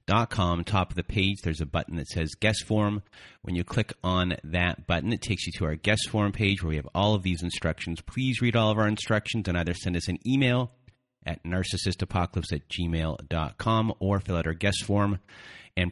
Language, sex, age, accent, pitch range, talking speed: English, male, 30-49, American, 85-105 Hz, 220 wpm